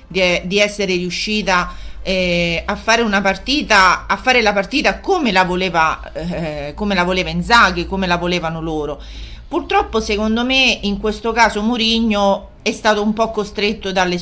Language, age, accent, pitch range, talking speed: Italian, 40-59, native, 180-220 Hz, 155 wpm